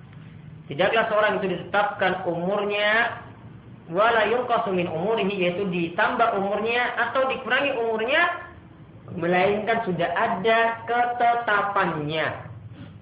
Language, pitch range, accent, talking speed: English, 145-205 Hz, Indonesian, 90 wpm